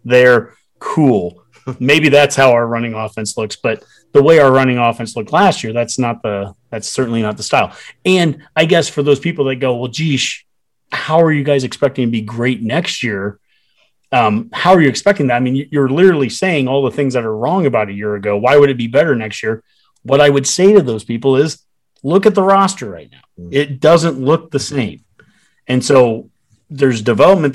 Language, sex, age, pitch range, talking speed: English, male, 30-49, 115-145 Hz, 210 wpm